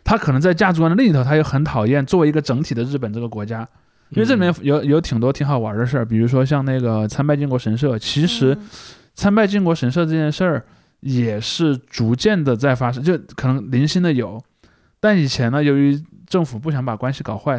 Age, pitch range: 20-39, 120-160 Hz